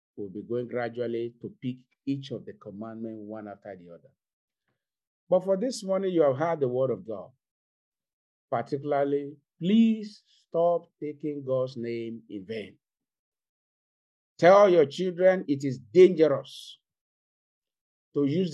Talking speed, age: 135 wpm, 50-69